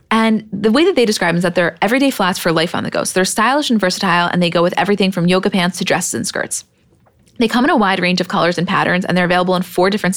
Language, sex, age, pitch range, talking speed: English, female, 20-39, 175-210 Hz, 295 wpm